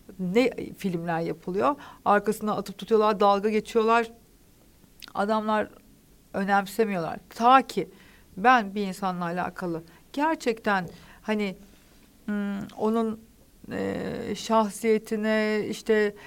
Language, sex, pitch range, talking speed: Turkish, female, 195-240 Hz, 85 wpm